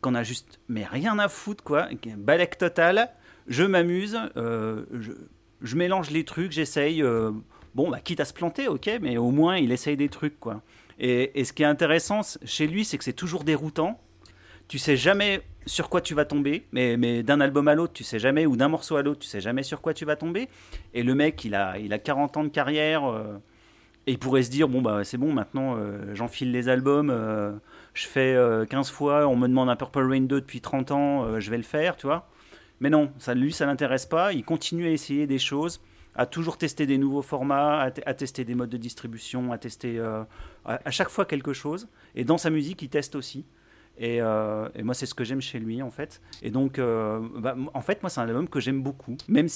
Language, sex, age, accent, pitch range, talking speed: French, male, 40-59, French, 120-155 Hz, 235 wpm